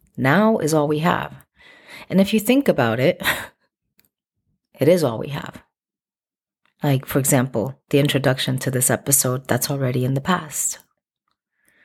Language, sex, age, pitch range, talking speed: English, female, 30-49, 125-155 Hz, 145 wpm